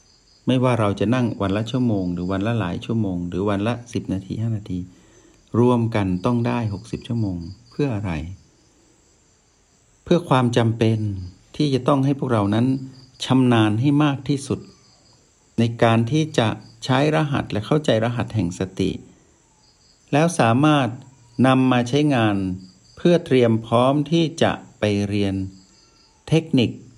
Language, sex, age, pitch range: Thai, male, 60-79, 100-125 Hz